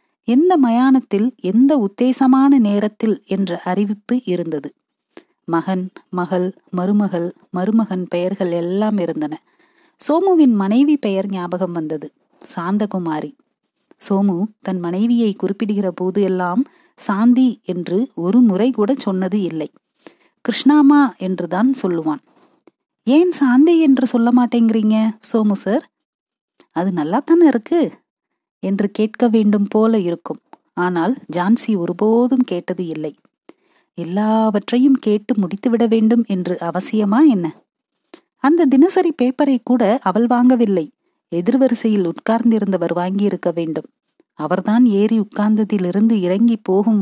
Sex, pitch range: female, 185-250 Hz